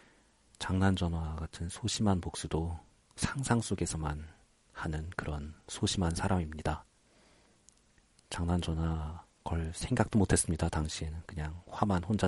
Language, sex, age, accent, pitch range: Korean, male, 40-59, native, 75-95 Hz